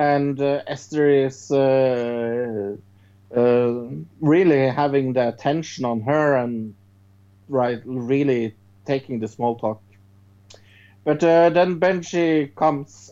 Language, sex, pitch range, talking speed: English, male, 105-145 Hz, 110 wpm